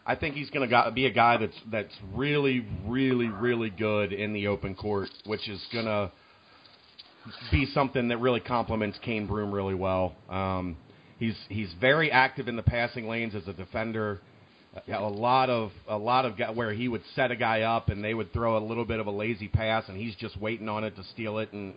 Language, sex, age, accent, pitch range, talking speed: English, male, 40-59, American, 105-130 Hz, 215 wpm